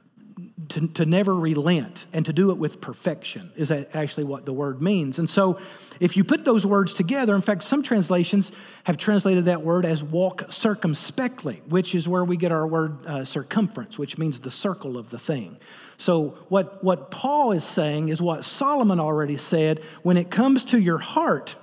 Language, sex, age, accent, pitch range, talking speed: English, male, 40-59, American, 160-220 Hz, 190 wpm